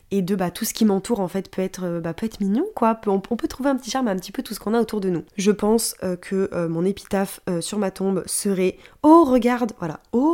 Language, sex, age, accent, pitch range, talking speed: French, female, 20-39, French, 175-215 Hz, 295 wpm